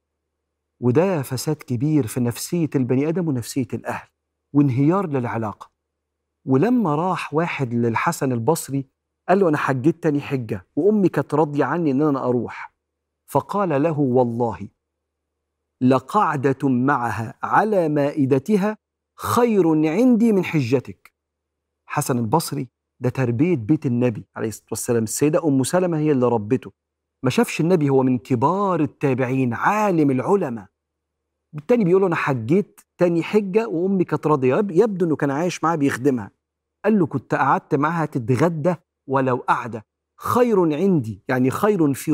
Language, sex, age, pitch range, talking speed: Arabic, male, 50-69, 125-170 Hz, 130 wpm